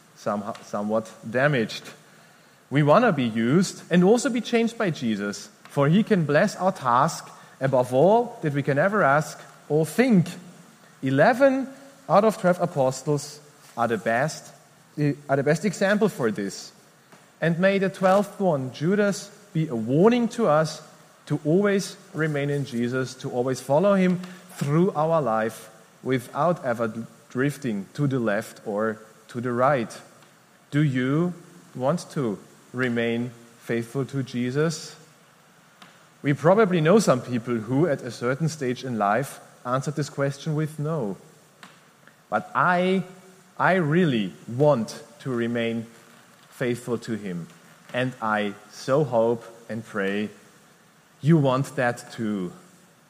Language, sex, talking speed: English, male, 135 wpm